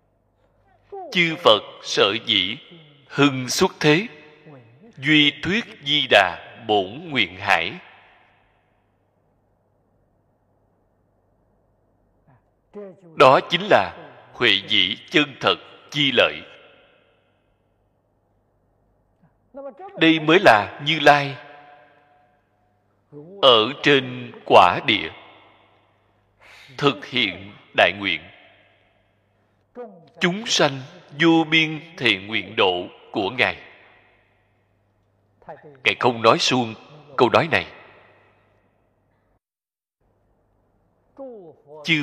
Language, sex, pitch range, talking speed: Vietnamese, male, 100-150 Hz, 75 wpm